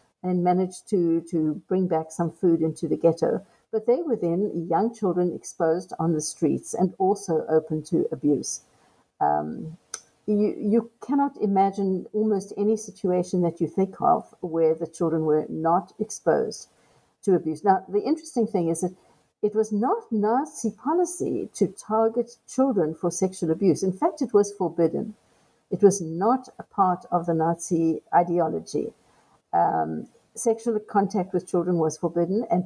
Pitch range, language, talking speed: 165-215 Hz, English, 155 wpm